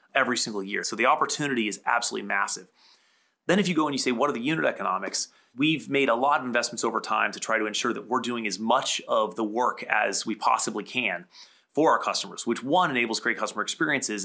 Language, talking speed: English, 230 wpm